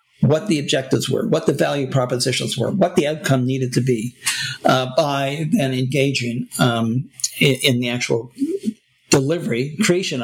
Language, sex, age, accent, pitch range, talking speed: English, male, 50-69, American, 120-150 Hz, 150 wpm